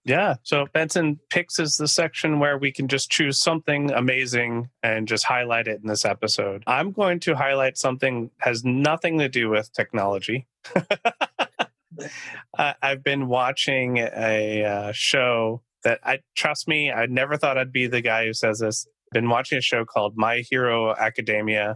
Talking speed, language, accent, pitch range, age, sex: 170 wpm, English, American, 115-145 Hz, 30-49, male